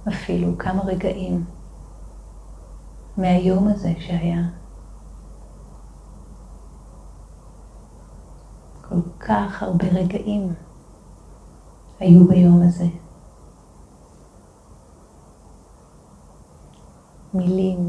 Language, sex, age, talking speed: Hebrew, female, 30-49, 45 wpm